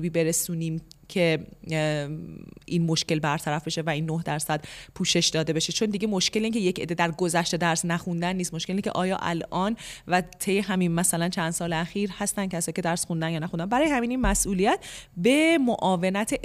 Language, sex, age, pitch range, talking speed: Persian, female, 30-49, 170-230 Hz, 180 wpm